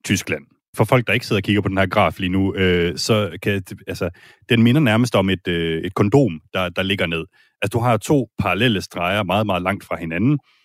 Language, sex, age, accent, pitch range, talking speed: Danish, male, 30-49, native, 95-125 Hz, 230 wpm